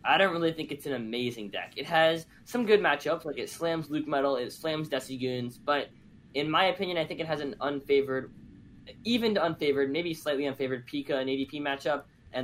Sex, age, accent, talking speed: male, 10-29, American, 205 wpm